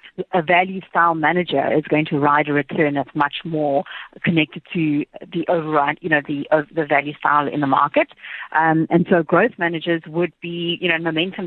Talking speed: 190 wpm